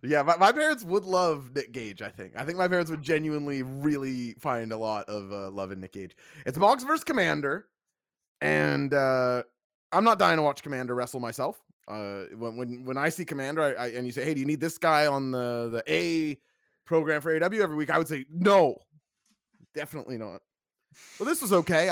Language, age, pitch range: English, 30-49, 120-165 Hz